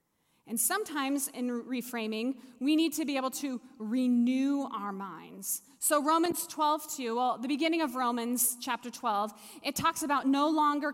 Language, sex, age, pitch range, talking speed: English, female, 20-39, 220-275 Hz, 155 wpm